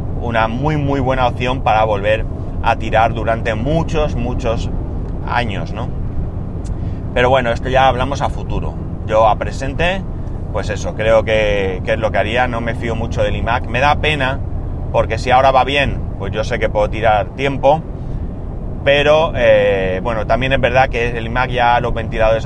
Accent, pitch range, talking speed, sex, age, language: Spanish, 100-130 Hz, 175 wpm, male, 30-49, Spanish